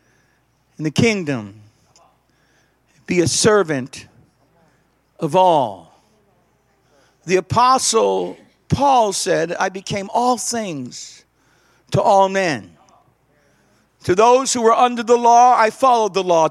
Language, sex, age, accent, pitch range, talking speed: English, male, 60-79, American, 195-320 Hz, 110 wpm